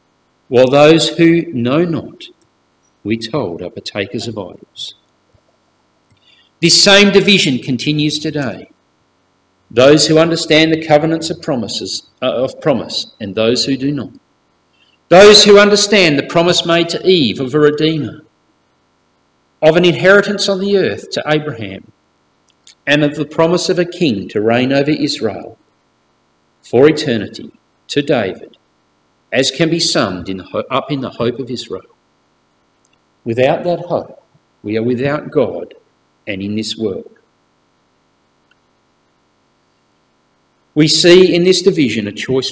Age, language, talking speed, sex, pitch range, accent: 50-69, English, 135 wpm, male, 130-170 Hz, Australian